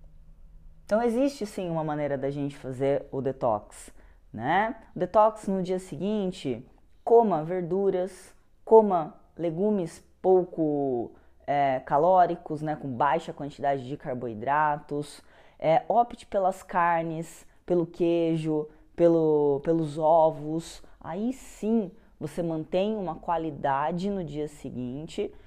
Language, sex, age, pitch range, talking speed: Portuguese, female, 20-39, 140-185 Hz, 105 wpm